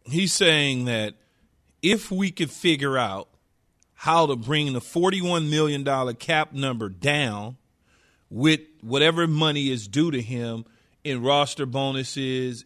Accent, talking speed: American, 135 wpm